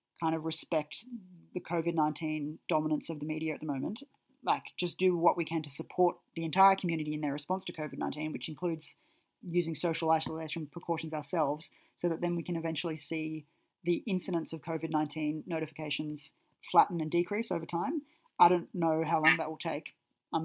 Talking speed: 190 wpm